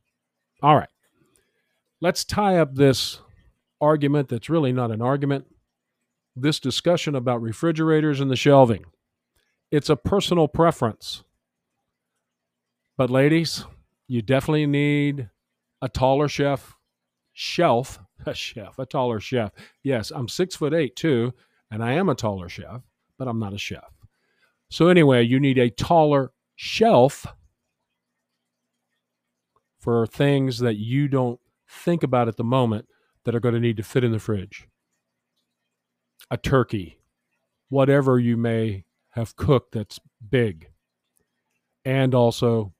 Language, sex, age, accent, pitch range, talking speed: English, male, 50-69, American, 100-140 Hz, 130 wpm